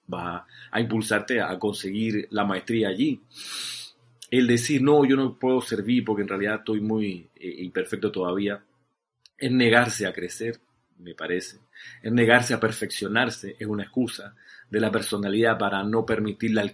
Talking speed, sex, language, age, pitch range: 155 wpm, male, Spanish, 40-59, 100-120 Hz